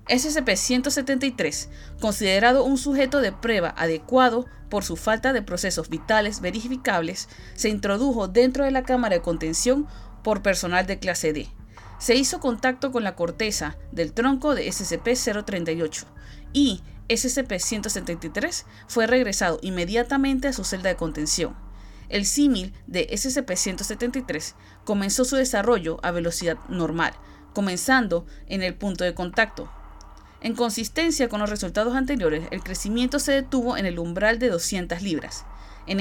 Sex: female